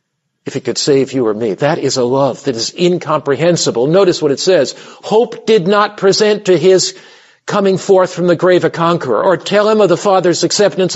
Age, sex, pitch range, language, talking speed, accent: 50-69, male, 175-220 Hz, English, 210 wpm, American